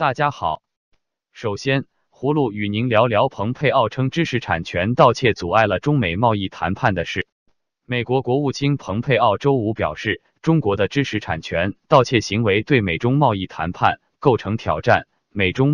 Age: 20-39